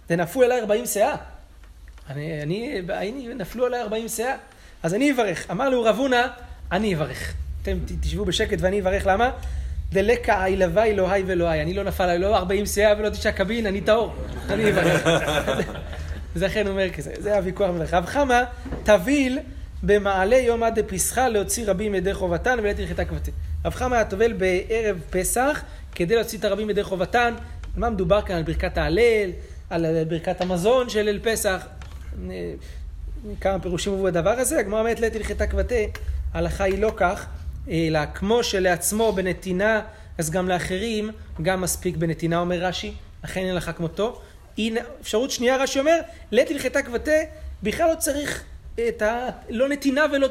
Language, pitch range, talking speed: Hebrew, 170-225 Hz, 150 wpm